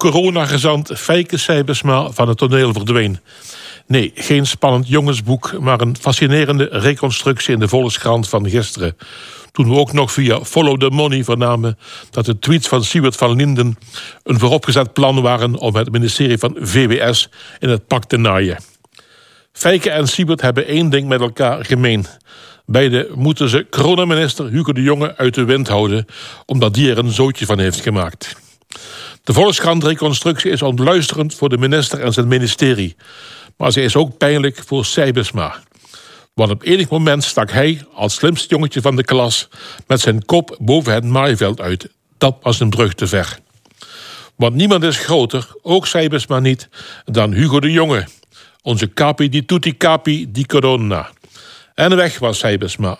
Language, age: Dutch, 60-79